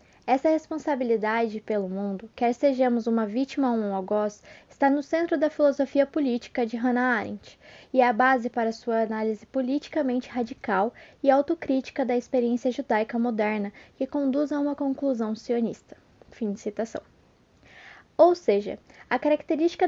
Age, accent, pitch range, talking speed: 10-29, Brazilian, 225-285 Hz, 145 wpm